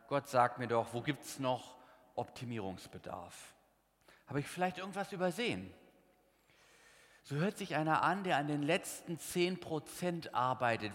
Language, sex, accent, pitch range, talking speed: German, male, German, 115-155 Hz, 135 wpm